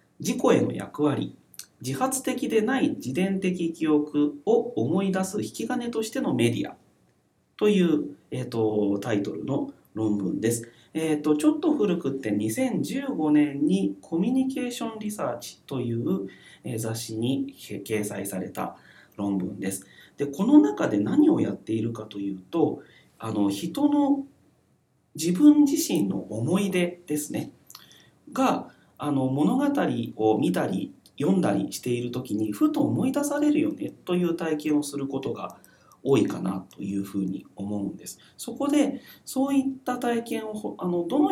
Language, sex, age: Japanese, male, 40-59